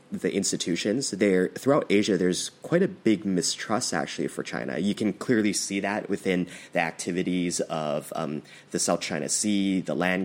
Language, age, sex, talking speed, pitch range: English, 30-49, male, 170 wpm, 90-110 Hz